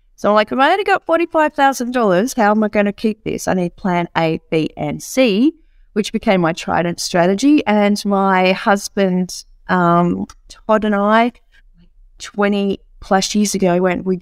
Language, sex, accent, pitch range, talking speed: English, female, Australian, 180-220 Hz, 175 wpm